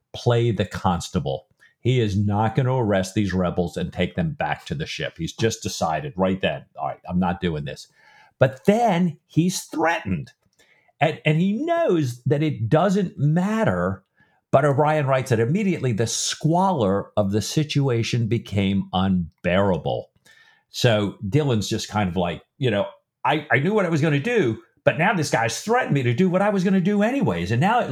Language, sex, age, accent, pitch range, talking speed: English, male, 50-69, American, 110-160 Hz, 190 wpm